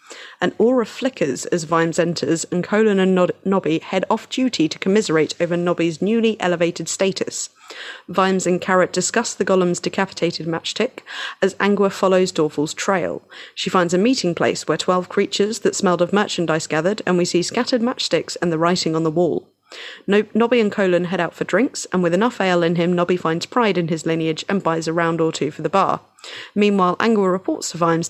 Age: 30-49